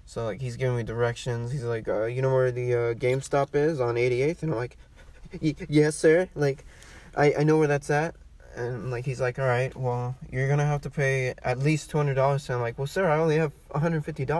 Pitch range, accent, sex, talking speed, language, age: 125-155 Hz, American, male, 230 wpm, English, 20-39